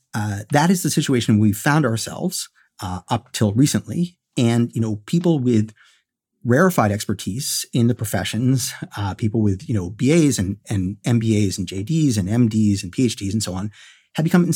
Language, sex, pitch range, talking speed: English, male, 105-145 Hz, 175 wpm